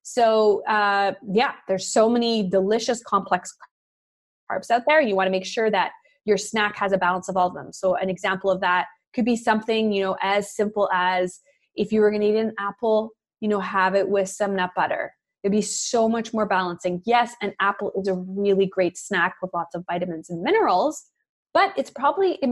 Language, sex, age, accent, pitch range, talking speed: English, female, 20-39, American, 190-235 Hz, 210 wpm